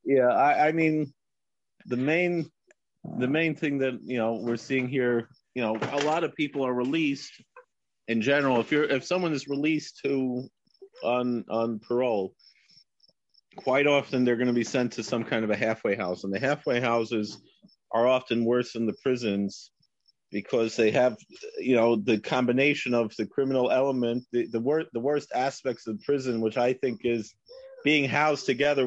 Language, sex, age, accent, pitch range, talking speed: English, male, 40-59, American, 115-140 Hz, 175 wpm